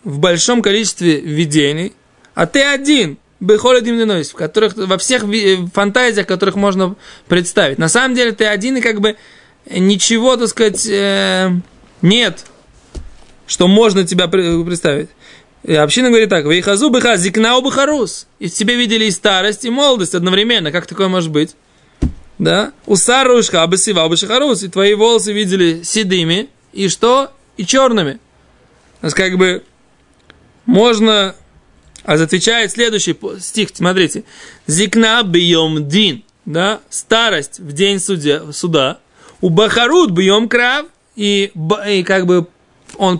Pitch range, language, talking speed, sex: 185-235 Hz, Russian, 130 wpm, male